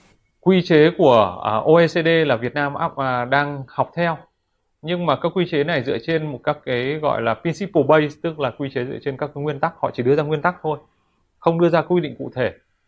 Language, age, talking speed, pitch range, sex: Vietnamese, 20-39, 225 wpm, 120-155 Hz, male